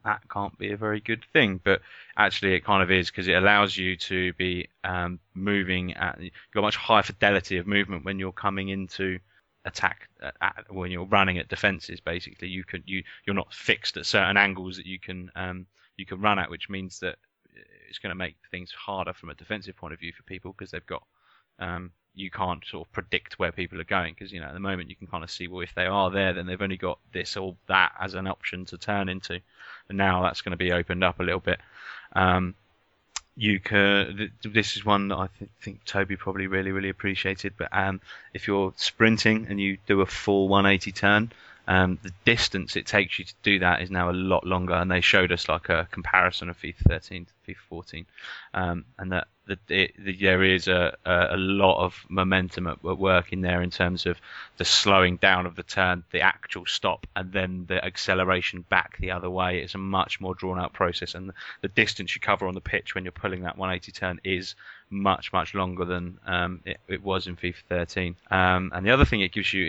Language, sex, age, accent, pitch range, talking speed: English, male, 20-39, British, 90-100 Hz, 225 wpm